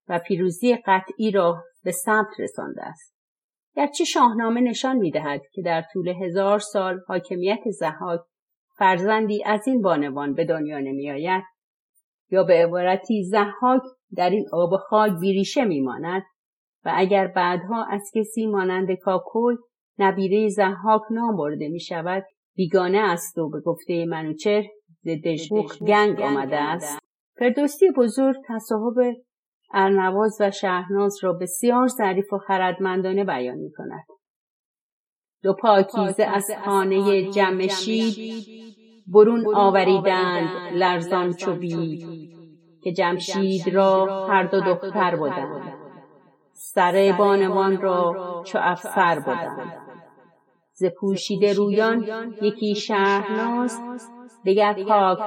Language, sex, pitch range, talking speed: Persian, female, 180-215 Hz, 115 wpm